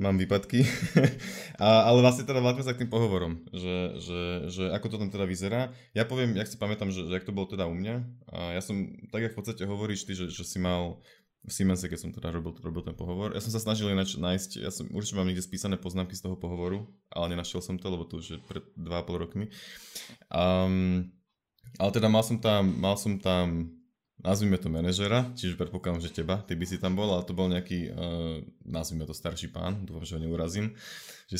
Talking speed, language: 220 wpm, Slovak